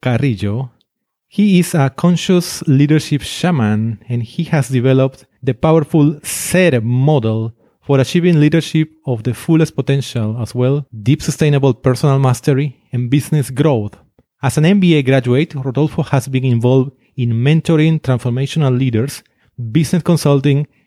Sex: male